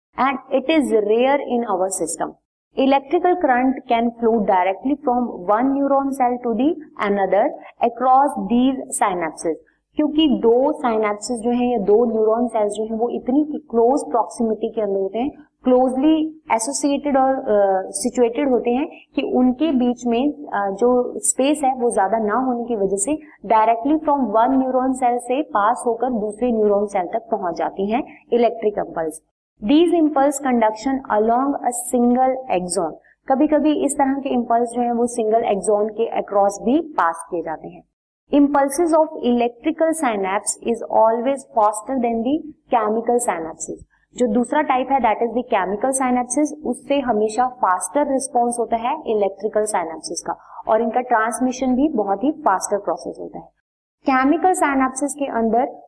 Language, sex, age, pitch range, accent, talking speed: Hindi, female, 30-49, 220-275 Hz, native, 105 wpm